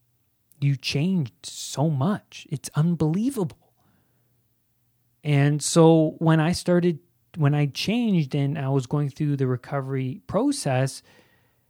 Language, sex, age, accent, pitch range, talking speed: English, male, 20-39, American, 120-150 Hz, 115 wpm